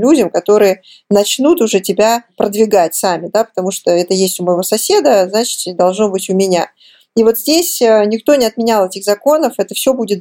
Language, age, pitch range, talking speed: Russian, 20-39, 185-230 Hz, 180 wpm